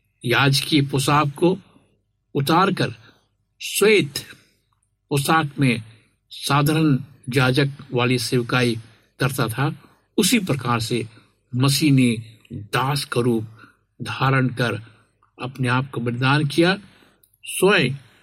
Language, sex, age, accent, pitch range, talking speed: Hindi, male, 60-79, native, 110-145 Hz, 95 wpm